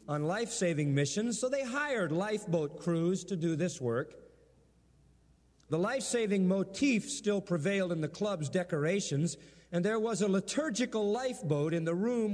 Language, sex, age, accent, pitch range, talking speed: English, male, 50-69, American, 165-225 Hz, 145 wpm